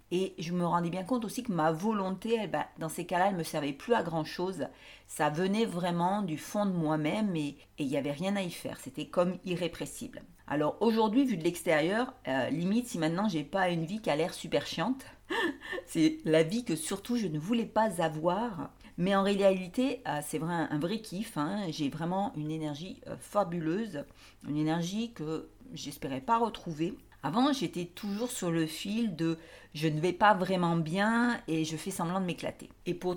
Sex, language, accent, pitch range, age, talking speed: female, French, French, 160-210 Hz, 50-69, 205 wpm